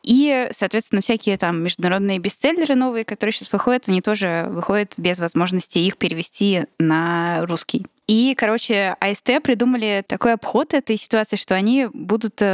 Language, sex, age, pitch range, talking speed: Russian, female, 10-29, 185-225 Hz, 145 wpm